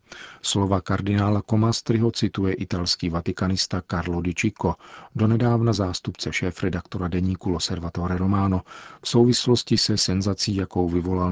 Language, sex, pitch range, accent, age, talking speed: Czech, male, 90-105 Hz, native, 40-59, 110 wpm